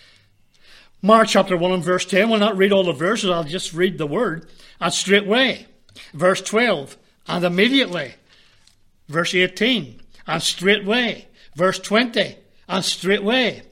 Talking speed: 135 wpm